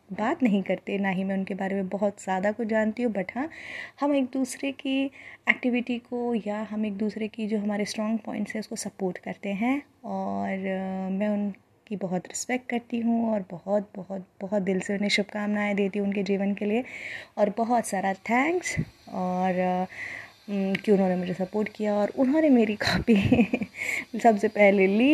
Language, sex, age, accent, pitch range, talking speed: Hindi, female, 20-39, native, 195-240 Hz, 180 wpm